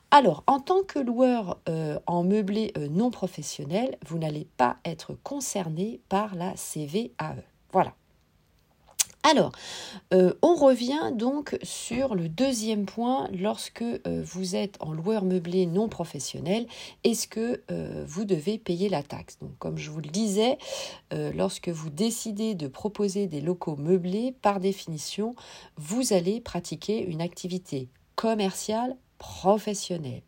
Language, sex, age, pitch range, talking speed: French, female, 40-59, 165-220 Hz, 140 wpm